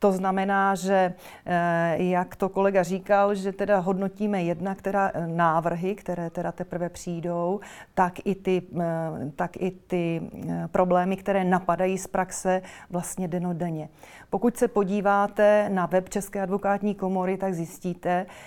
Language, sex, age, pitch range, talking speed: Czech, female, 40-59, 175-195 Hz, 130 wpm